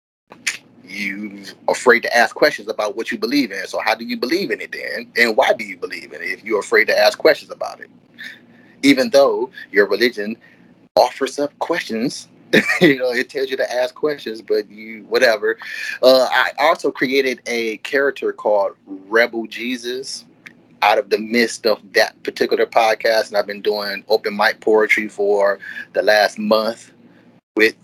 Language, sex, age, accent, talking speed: Hindi, male, 30-49, American, 170 wpm